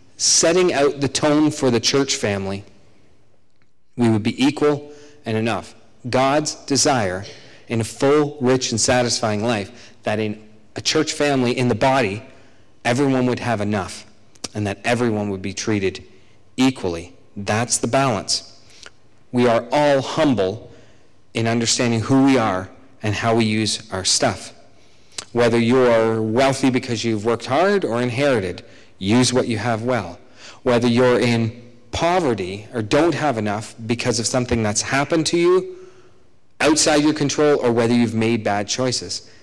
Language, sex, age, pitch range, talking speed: English, male, 40-59, 110-135 Hz, 150 wpm